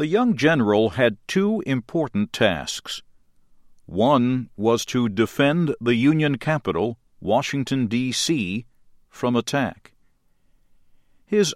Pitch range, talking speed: 115-155 Hz, 100 wpm